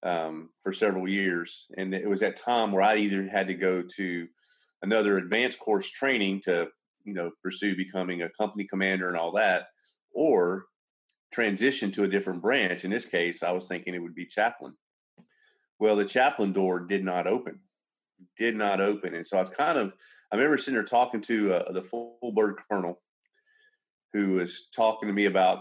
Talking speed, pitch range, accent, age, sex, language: 185 wpm, 95-110 Hz, American, 40-59, male, English